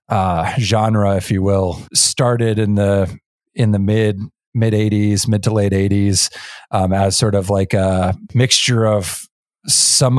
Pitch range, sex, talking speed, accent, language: 100-120 Hz, male, 155 wpm, American, English